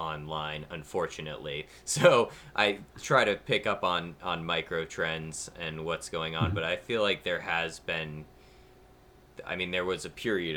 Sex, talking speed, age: male, 165 wpm, 20-39